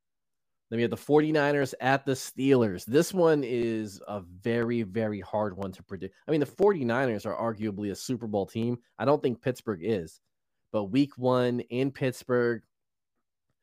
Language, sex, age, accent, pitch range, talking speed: English, male, 20-39, American, 105-125 Hz, 165 wpm